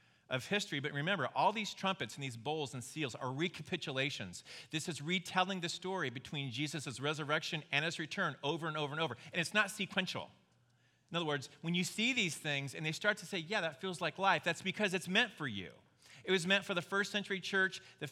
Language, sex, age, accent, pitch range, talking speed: English, male, 40-59, American, 140-190 Hz, 220 wpm